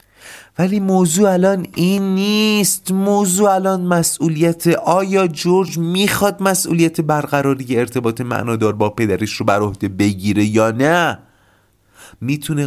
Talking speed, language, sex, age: 115 wpm, Persian, male, 30-49